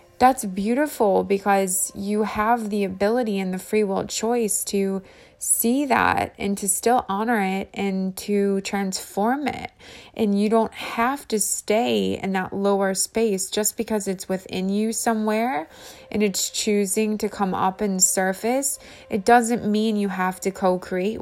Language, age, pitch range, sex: English, 20-39, 185-215 Hz, female